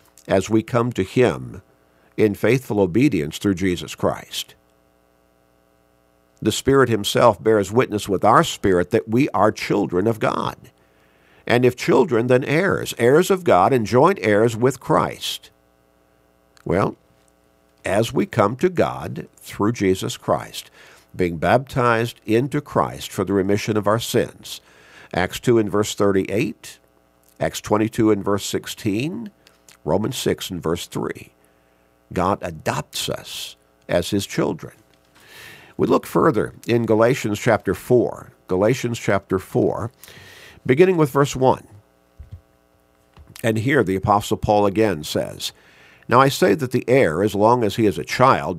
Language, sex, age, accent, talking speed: English, male, 50-69, American, 140 wpm